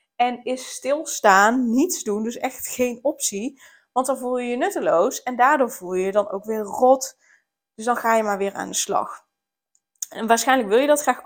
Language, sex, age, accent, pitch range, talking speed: Dutch, female, 20-39, Dutch, 215-270 Hz, 210 wpm